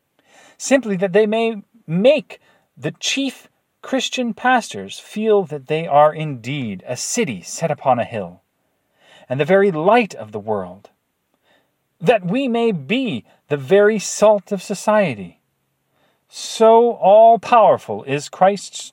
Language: English